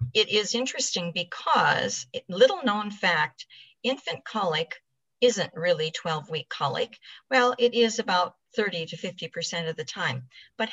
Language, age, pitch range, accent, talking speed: English, 50-69, 160-215 Hz, American, 140 wpm